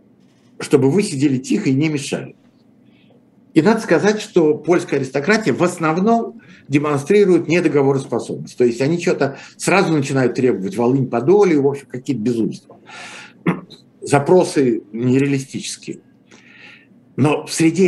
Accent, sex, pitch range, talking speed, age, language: native, male, 125-170 Hz, 110 wpm, 60-79, Russian